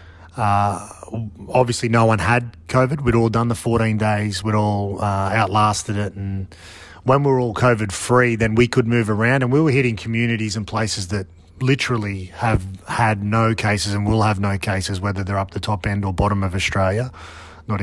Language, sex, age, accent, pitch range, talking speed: English, male, 30-49, Australian, 100-125 Hz, 195 wpm